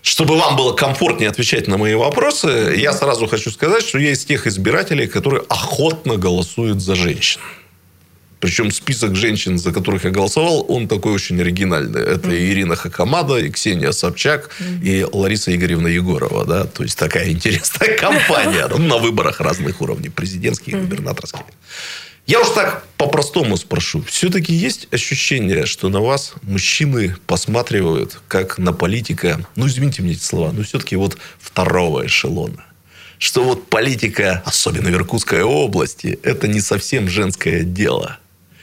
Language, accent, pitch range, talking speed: Russian, native, 90-140 Hz, 150 wpm